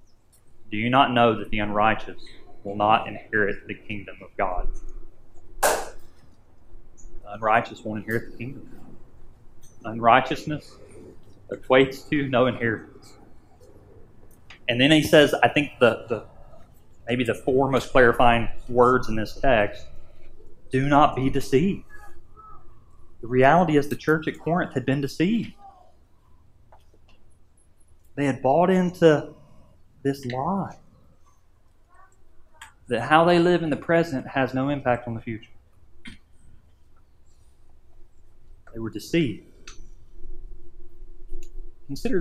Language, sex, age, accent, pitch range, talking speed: English, male, 30-49, American, 105-140 Hz, 110 wpm